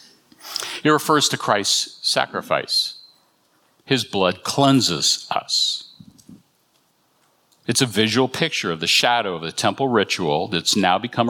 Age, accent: 60-79, American